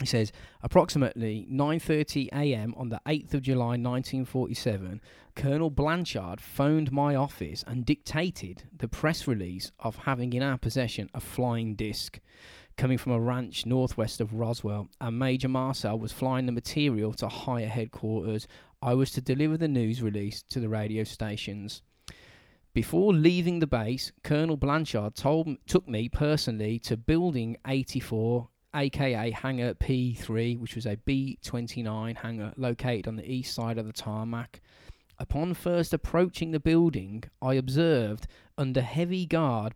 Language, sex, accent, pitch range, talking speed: English, male, British, 110-145 Hz, 145 wpm